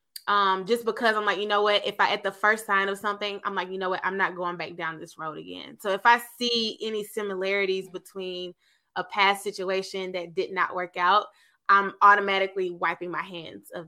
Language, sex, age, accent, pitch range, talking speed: English, female, 20-39, American, 180-215 Hz, 215 wpm